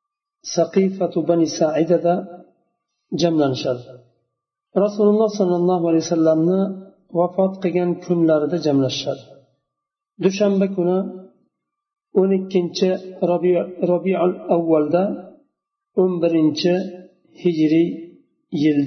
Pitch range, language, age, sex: 160-205 Hz, Russian, 50-69, male